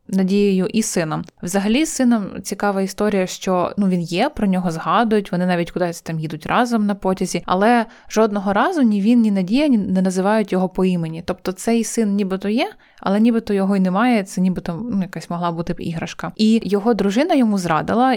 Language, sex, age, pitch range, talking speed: Ukrainian, female, 20-39, 180-225 Hz, 190 wpm